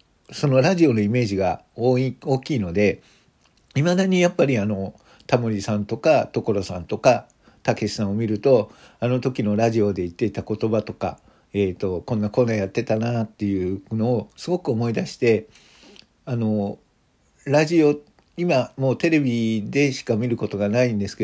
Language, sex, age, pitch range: Japanese, male, 50-69, 105-140 Hz